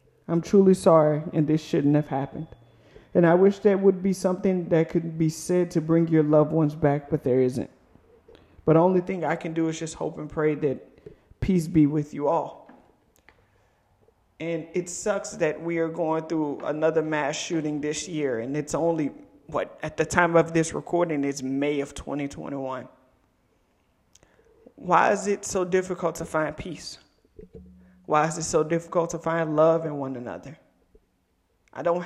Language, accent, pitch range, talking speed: English, American, 145-175 Hz, 175 wpm